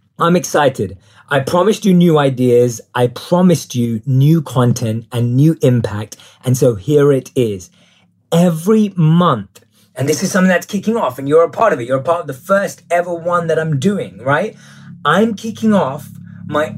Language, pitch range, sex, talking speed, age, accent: English, 135-180 Hz, male, 180 wpm, 20-39, British